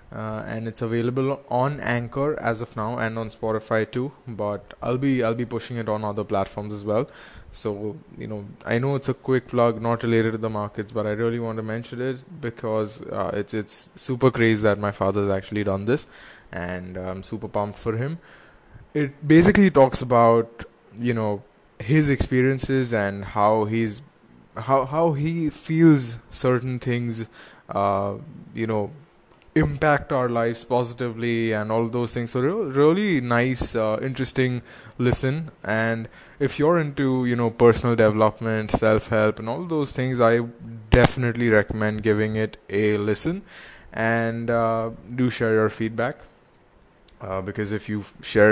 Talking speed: 160 wpm